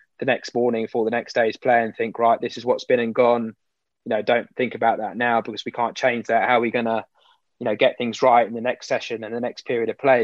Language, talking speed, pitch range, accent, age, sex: English, 285 wpm, 110-120 Hz, British, 20-39, male